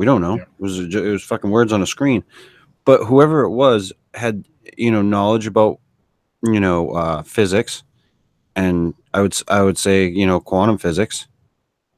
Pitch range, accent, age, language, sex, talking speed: 95-115 Hz, American, 30-49, English, male, 175 wpm